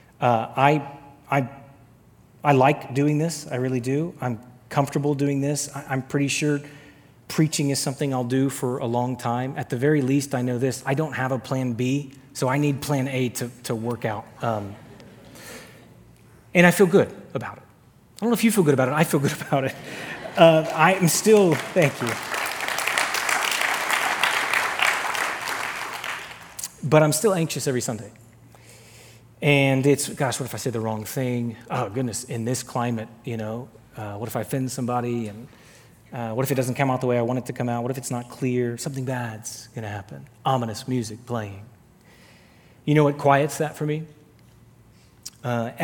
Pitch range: 120-140 Hz